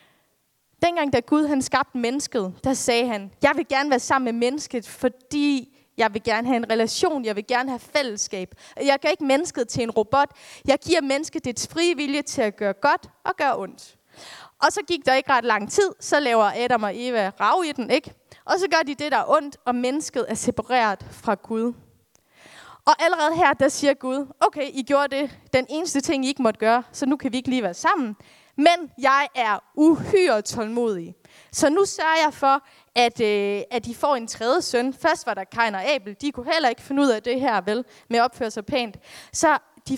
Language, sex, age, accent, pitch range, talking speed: Danish, female, 20-39, native, 225-290 Hz, 210 wpm